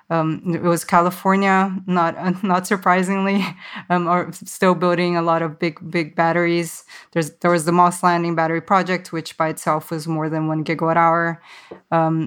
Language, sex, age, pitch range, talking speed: English, female, 20-39, 160-180 Hz, 165 wpm